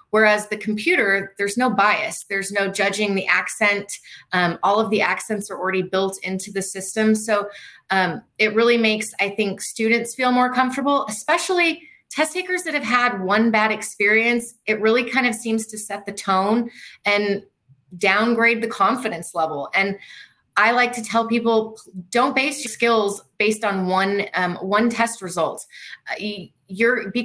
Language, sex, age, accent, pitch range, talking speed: English, female, 30-49, American, 200-240 Hz, 170 wpm